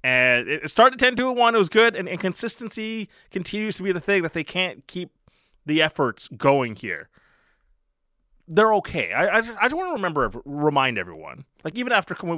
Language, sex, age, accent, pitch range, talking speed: English, male, 20-39, American, 140-210 Hz, 195 wpm